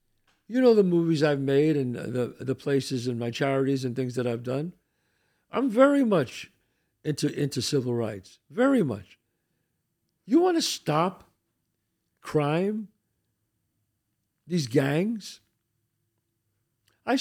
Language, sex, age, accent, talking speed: English, male, 60-79, American, 120 wpm